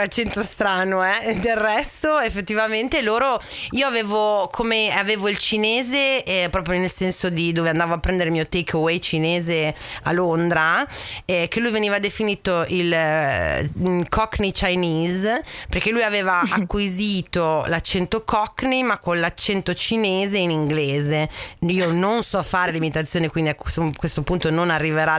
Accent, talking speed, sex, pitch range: native, 145 wpm, female, 170-225 Hz